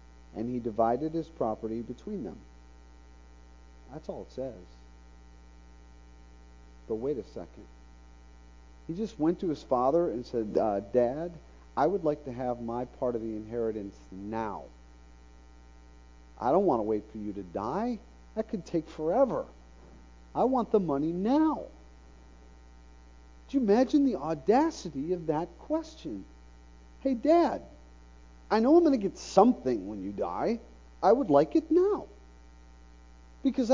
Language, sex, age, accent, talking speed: English, male, 40-59, American, 140 wpm